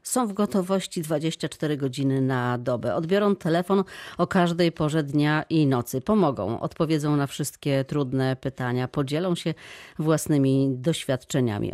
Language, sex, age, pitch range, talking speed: Polish, female, 40-59, 130-175 Hz, 130 wpm